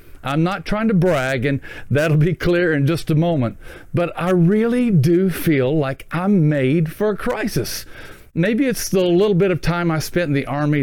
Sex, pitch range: male, 140-195 Hz